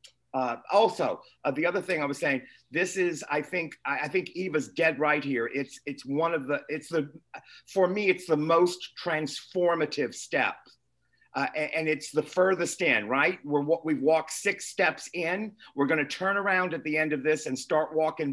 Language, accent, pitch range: English, American, 145-180 Hz